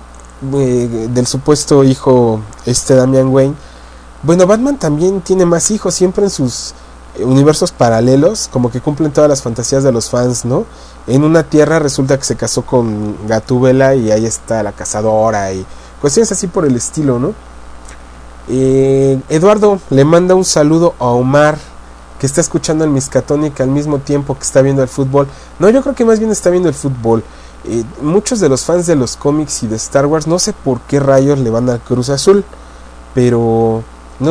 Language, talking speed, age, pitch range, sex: English, 180 wpm, 30-49, 110-150 Hz, male